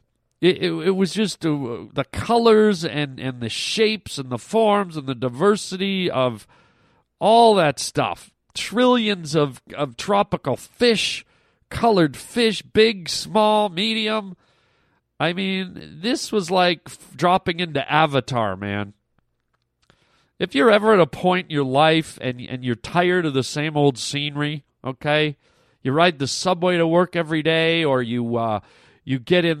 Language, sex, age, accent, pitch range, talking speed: English, male, 40-59, American, 135-185 Hz, 150 wpm